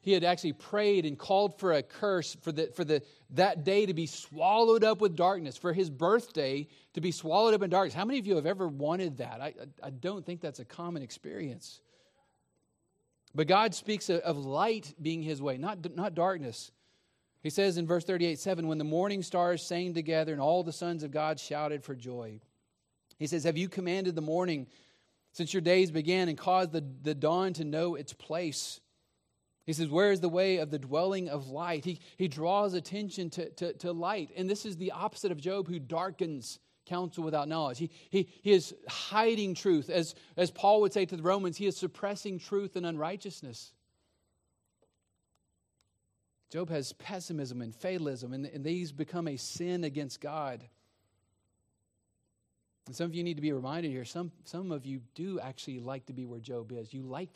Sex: male